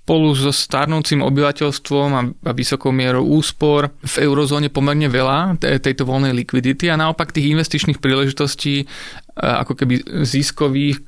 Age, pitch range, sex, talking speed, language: 30-49, 130-150 Hz, male, 125 wpm, Slovak